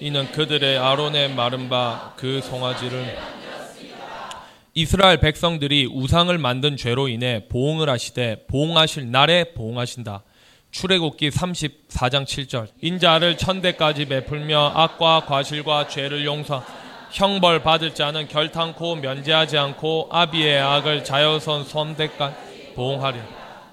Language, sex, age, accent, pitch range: Korean, male, 20-39, native, 130-170 Hz